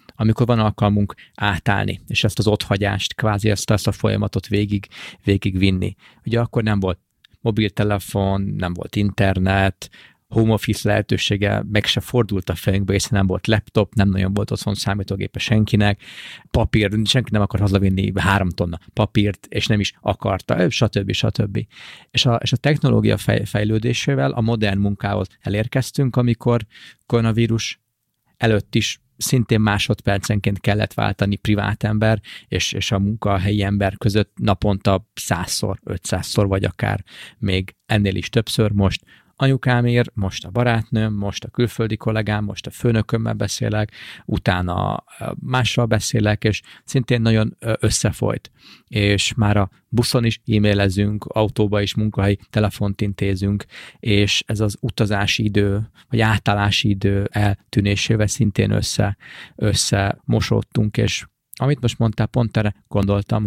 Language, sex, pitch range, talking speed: Hungarian, male, 100-115 Hz, 135 wpm